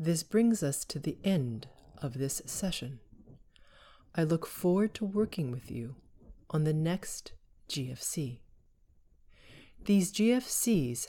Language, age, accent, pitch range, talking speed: English, 30-49, American, 130-185 Hz, 120 wpm